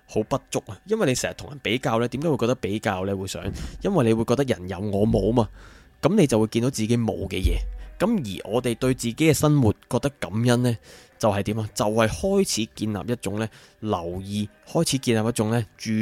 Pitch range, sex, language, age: 100-125 Hz, male, Chinese, 20-39